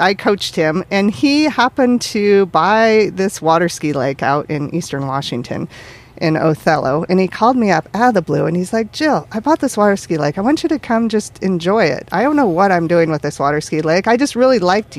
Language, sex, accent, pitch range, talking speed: English, female, American, 160-215 Hz, 240 wpm